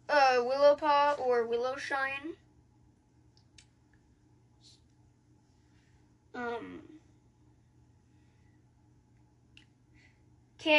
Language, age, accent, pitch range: English, 20-39, American, 245-300 Hz